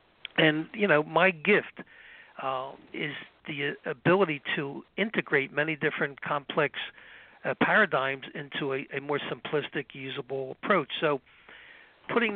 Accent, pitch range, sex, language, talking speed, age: American, 135-165 Hz, male, English, 120 wpm, 60-79